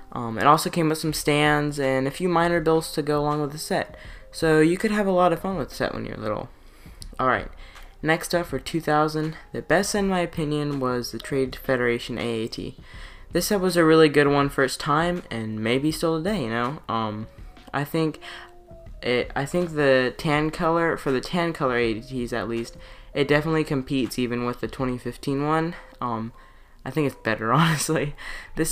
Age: 10-29